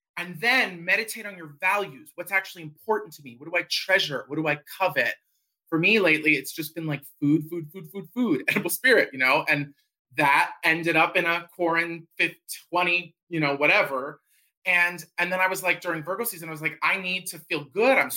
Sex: male